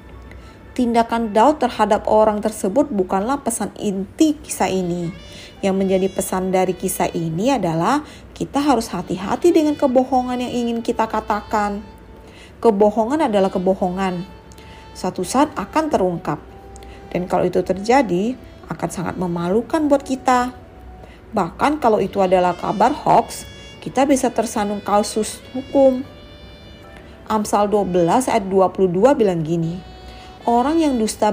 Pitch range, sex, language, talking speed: 185-245 Hz, female, Indonesian, 120 wpm